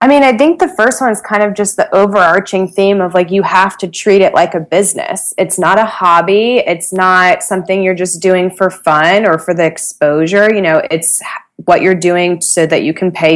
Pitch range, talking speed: 165-195 Hz, 230 wpm